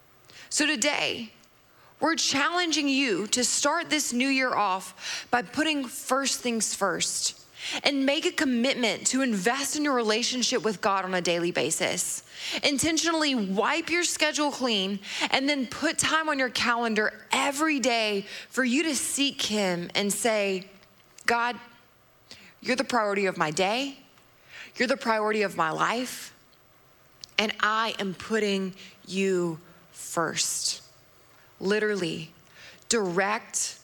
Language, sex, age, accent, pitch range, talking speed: English, female, 20-39, American, 215-295 Hz, 130 wpm